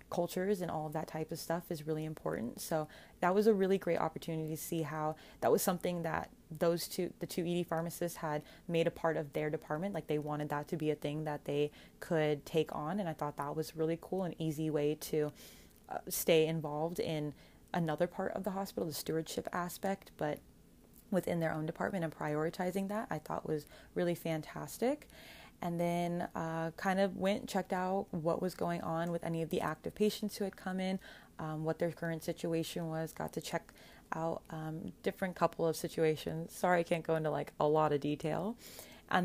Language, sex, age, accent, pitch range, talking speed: English, female, 20-39, American, 160-190 Hz, 205 wpm